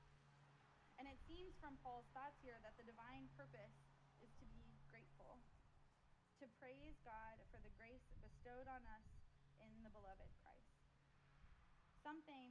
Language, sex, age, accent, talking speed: English, female, 20-39, American, 140 wpm